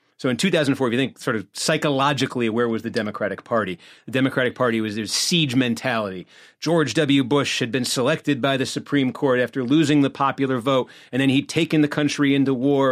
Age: 30-49